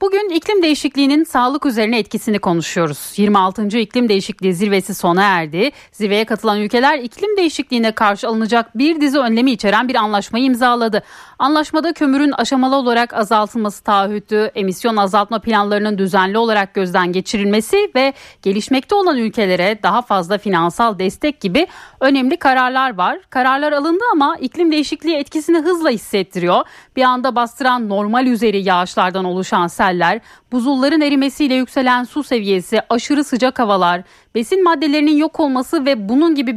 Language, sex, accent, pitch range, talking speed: Turkish, female, native, 205-280 Hz, 135 wpm